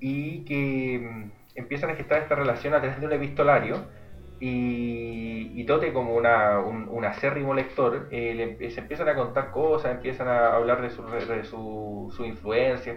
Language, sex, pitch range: Spanish, male, 115-145 Hz